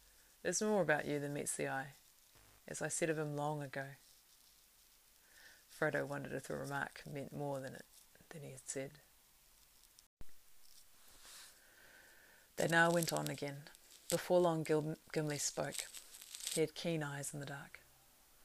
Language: English